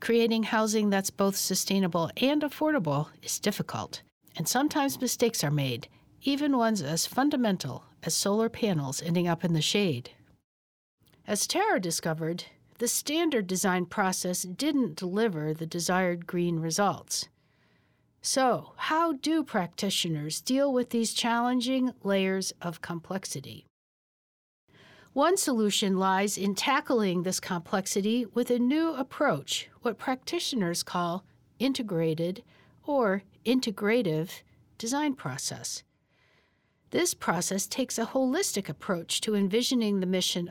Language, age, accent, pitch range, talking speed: English, 60-79, American, 175-250 Hz, 115 wpm